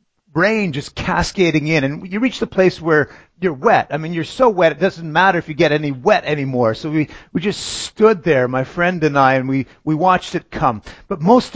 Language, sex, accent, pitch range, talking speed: English, male, American, 145-205 Hz, 230 wpm